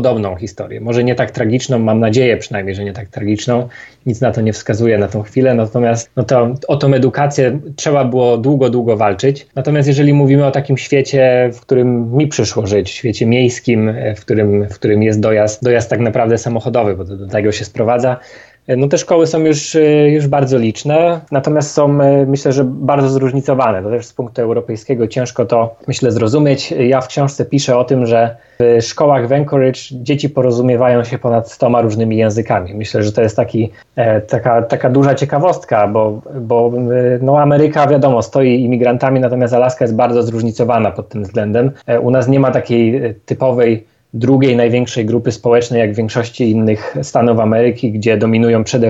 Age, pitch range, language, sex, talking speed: 20-39, 115-140 Hz, Polish, male, 175 wpm